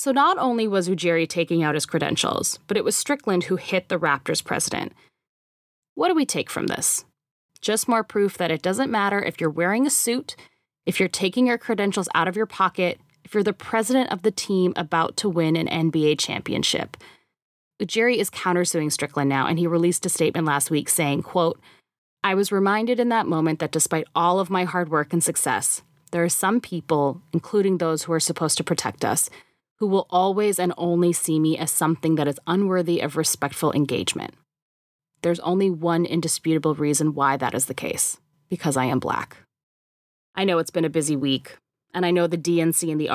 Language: English